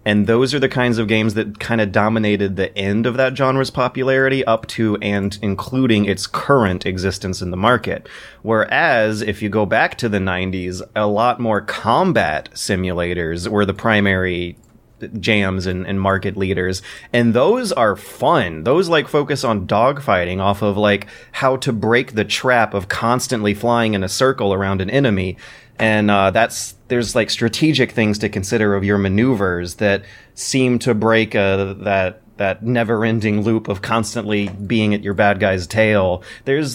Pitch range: 100-125 Hz